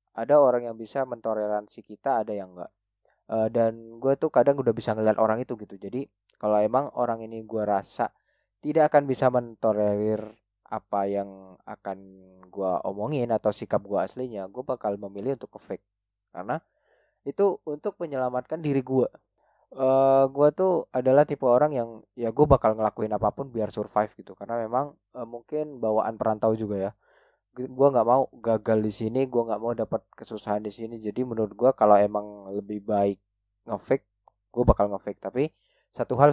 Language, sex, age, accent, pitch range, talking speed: Indonesian, male, 20-39, native, 105-130 Hz, 165 wpm